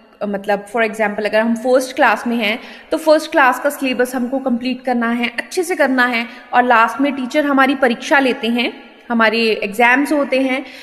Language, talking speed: Hindi, 190 wpm